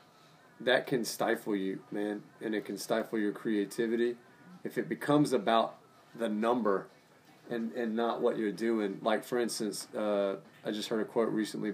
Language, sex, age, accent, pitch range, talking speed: English, male, 30-49, American, 100-115 Hz, 170 wpm